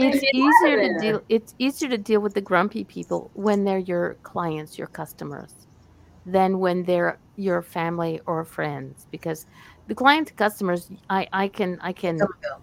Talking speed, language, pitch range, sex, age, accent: 160 wpm, English, 175-220 Hz, female, 50-69, American